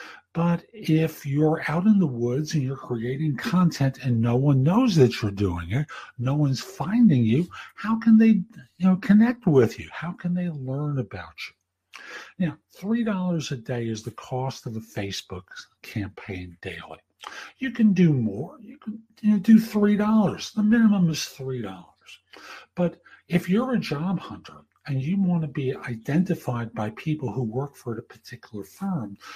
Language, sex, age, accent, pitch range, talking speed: English, male, 60-79, American, 125-185 Hz, 160 wpm